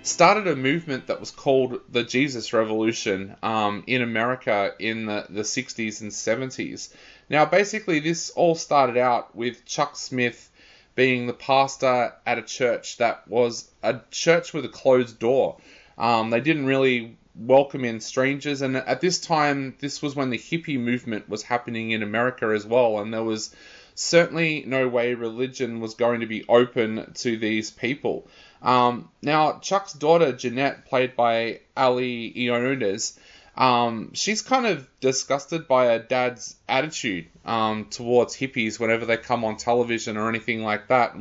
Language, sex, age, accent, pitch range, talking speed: English, male, 20-39, Australian, 115-140 Hz, 160 wpm